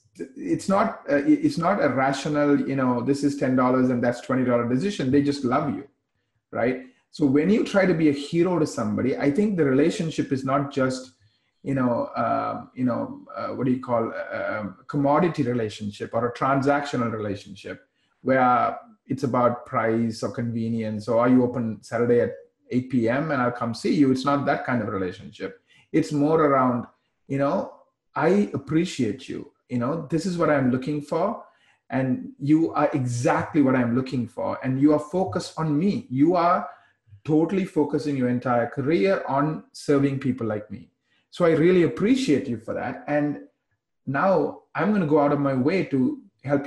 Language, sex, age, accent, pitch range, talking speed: English, male, 30-49, Indian, 125-150 Hz, 185 wpm